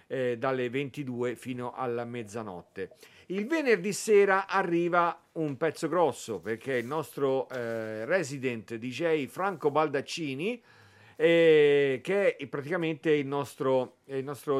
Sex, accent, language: male, native, Italian